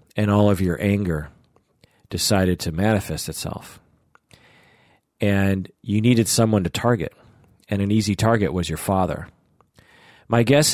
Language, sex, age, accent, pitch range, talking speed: English, male, 40-59, American, 90-115 Hz, 135 wpm